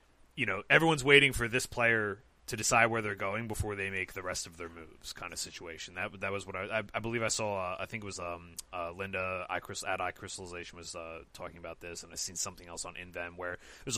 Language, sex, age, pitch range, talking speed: English, male, 30-49, 85-115 Hz, 260 wpm